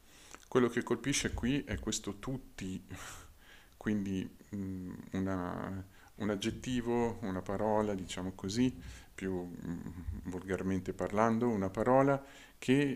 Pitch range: 95-115 Hz